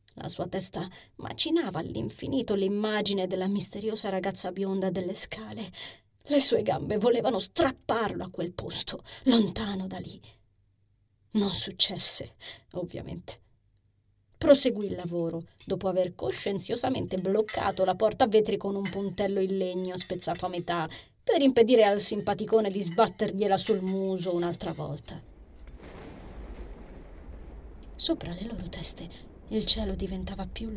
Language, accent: Italian, native